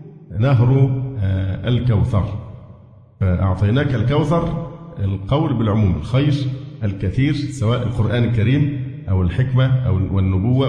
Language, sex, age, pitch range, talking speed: Arabic, male, 50-69, 110-135 Hz, 85 wpm